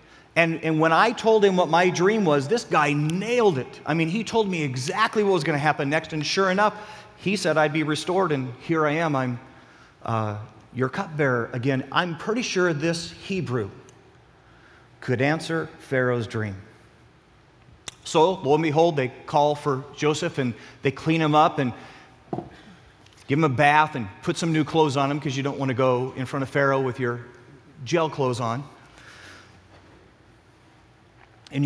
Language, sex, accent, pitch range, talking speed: English, male, American, 130-170 Hz, 175 wpm